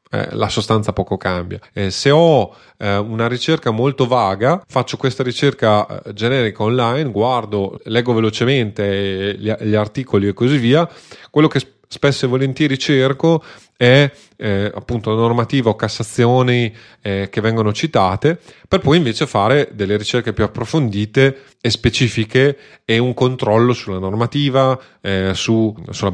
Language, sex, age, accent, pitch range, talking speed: Italian, male, 30-49, native, 105-135 Hz, 140 wpm